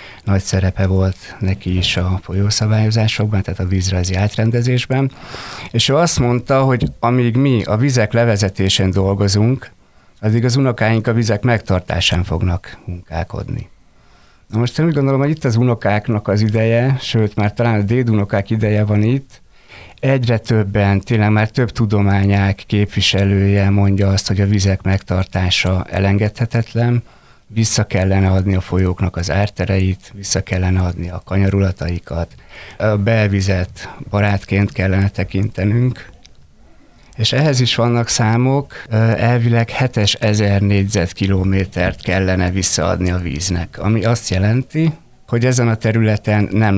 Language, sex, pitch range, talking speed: Hungarian, male, 95-115 Hz, 130 wpm